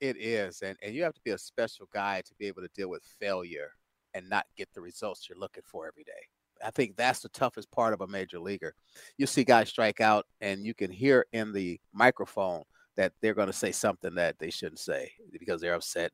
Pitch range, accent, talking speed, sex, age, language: 105-135 Hz, American, 235 wpm, male, 40-59, English